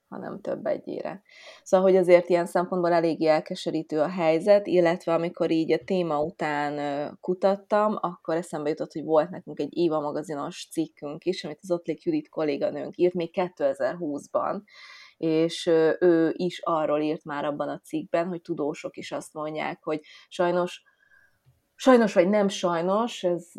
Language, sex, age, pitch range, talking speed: Hungarian, female, 20-39, 155-185 Hz, 150 wpm